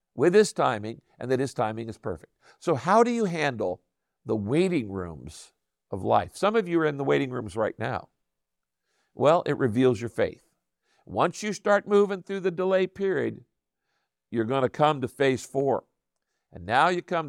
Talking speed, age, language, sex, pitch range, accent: 180 wpm, 50-69, English, male, 125-190 Hz, American